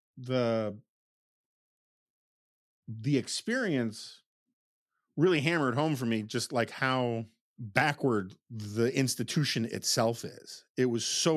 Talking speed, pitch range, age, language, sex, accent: 100 wpm, 115-145 Hz, 40-59, English, male, American